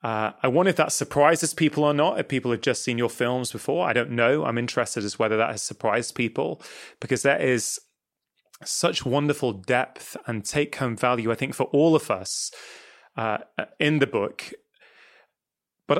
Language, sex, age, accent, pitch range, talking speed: English, male, 30-49, British, 120-160 Hz, 185 wpm